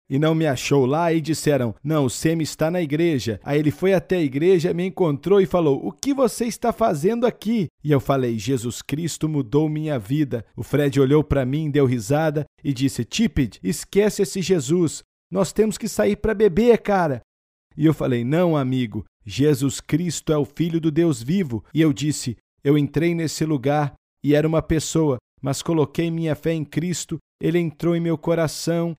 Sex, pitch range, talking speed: male, 140-175 Hz, 190 wpm